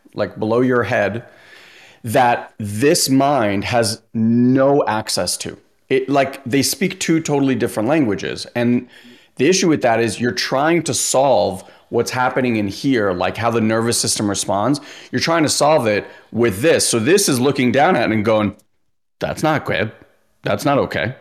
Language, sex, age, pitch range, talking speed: English, male, 30-49, 110-145 Hz, 175 wpm